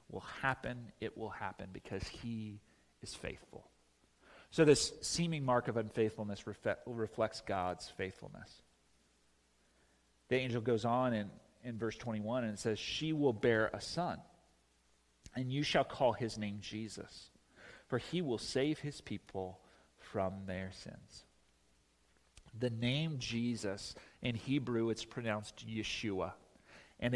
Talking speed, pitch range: 135 wpm, 95-140 Hz